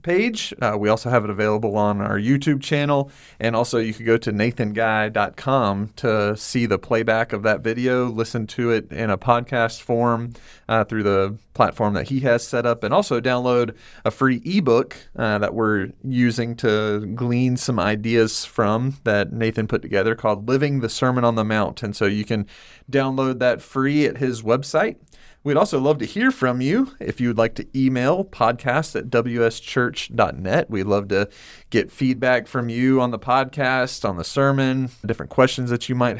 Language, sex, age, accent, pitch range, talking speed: English, male, 30-49, American, 110-130 Hz, 180 wpm